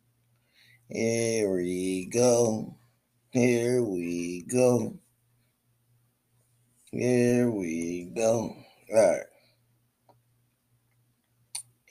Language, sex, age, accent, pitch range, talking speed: English, male, 20-39, American, 115-125 Hz, 55 wpm